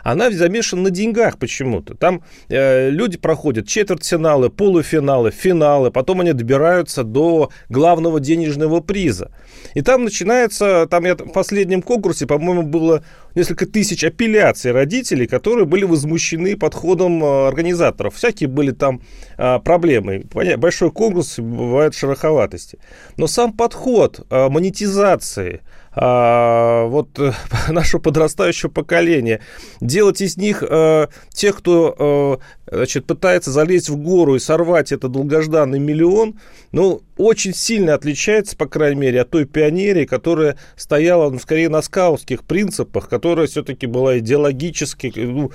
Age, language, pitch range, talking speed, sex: 30-49, Russian, 135-175 Hz, 125 wpm, male